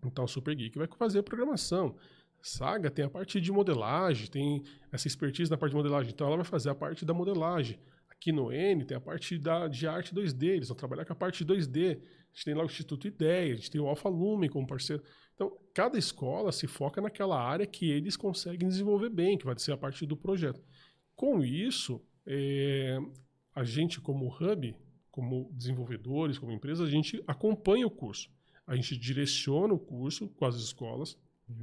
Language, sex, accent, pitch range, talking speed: Portuguese, male, Brazilian, 140-180 Hz, 190 wpm